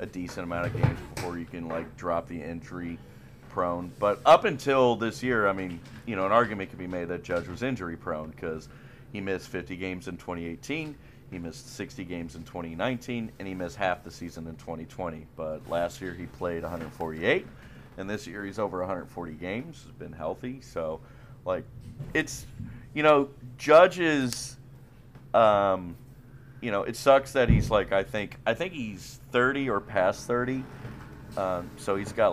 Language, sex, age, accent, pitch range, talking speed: English, male, 40-59, American, 85-130 Hz, 175 wpm